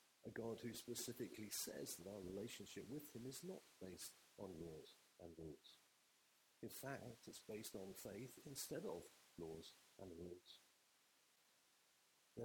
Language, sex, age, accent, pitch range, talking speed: English, male, 50-69, British, 95-125 Hz, 140 wpm